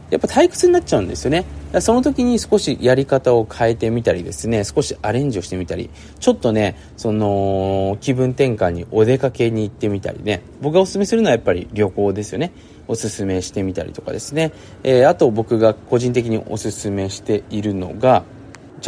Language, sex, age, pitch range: Japanese, male, 20-39, 105-160 Hz